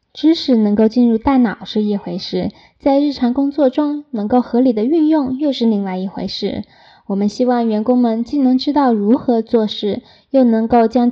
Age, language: 10-29, Chinese